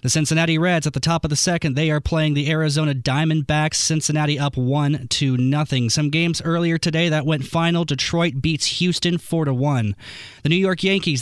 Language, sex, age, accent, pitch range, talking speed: English, male, 20-39, American, 145-170 Hz, 200 wpm